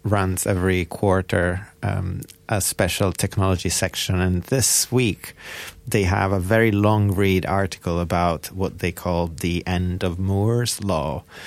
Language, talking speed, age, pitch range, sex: English, 140 wpm, 30-49, 90-105 Hz, male